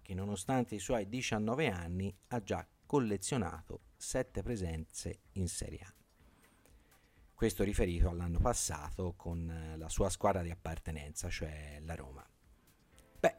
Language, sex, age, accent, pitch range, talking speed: Italian, male, 40-59, native, 85-105 Hz, 125 wpm